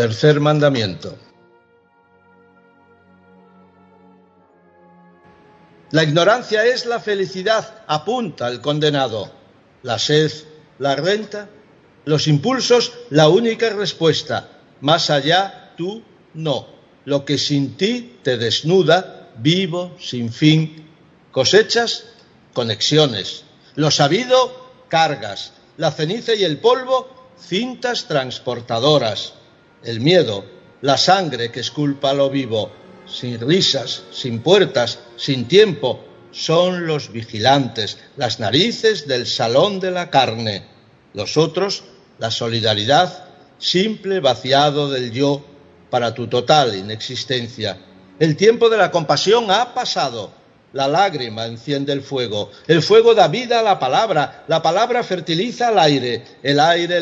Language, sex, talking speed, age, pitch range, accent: Spanish, male, 110 wpm, 60-79, 120-185 Hz, Spanish